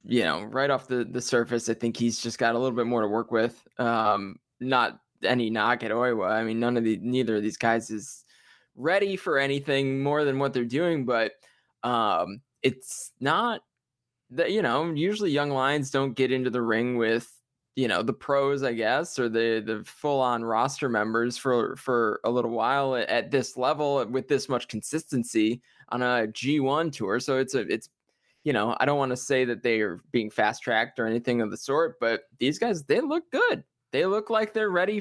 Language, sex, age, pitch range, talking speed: English, male, 20-39, 115-140 Hz, 205 wpm